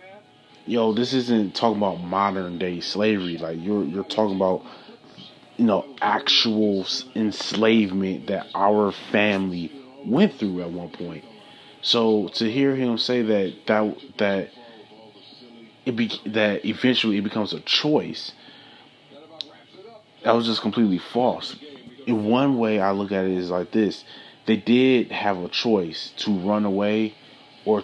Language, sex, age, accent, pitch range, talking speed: English, male, 20-39, American, 100-115 Hz, 140 wpm